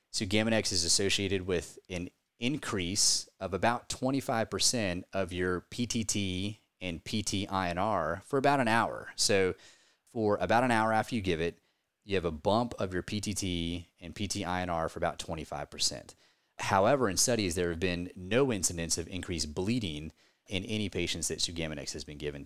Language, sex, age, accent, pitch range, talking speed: English, male, 30-49, American, 85-110 Hz, 155 wpm